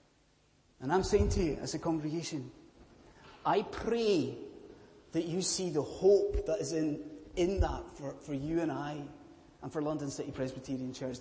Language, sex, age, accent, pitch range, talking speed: English, male, 30-49, British, 140-180 Hz, 165 wpm